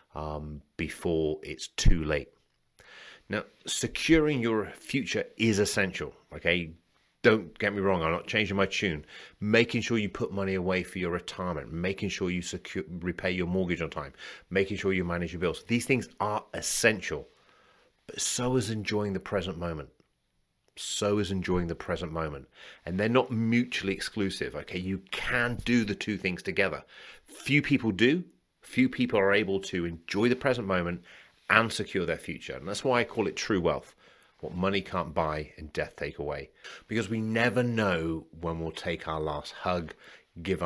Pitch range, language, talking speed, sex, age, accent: 80-105 Hz, English, 175 wpm, male, 30-49, British